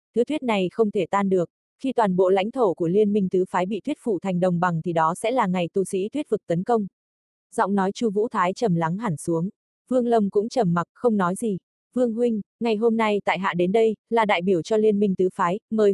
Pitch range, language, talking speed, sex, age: 185-225 Hz, Vietnamese, 260 wpm, female, 20-39